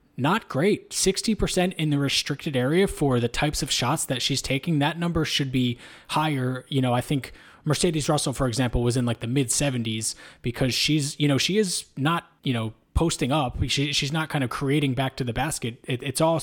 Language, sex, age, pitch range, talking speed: English, male, 20-39, 125-155 Hz, 205 wpm